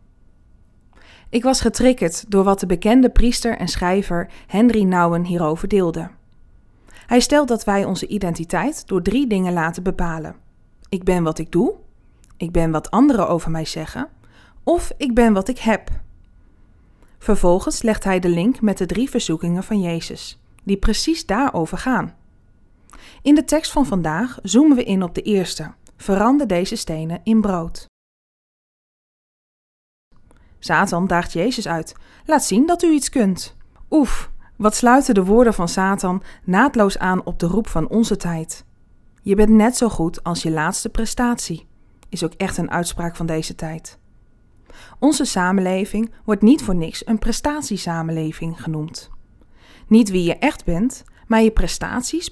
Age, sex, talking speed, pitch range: 20-39, female, 155 wpm, 170-230 Hz